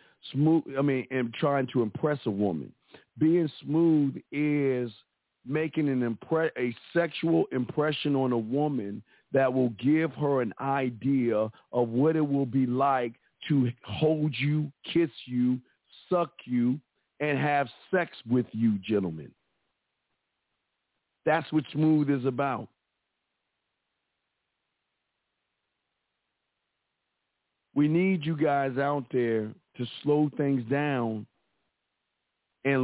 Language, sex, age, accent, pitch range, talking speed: English, male, 50-69, American, 125-150 Hz, 115 wpm